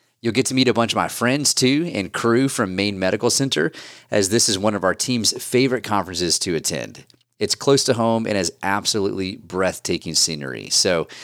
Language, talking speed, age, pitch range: English, 200 wpm, 30-49, 95-125 Hz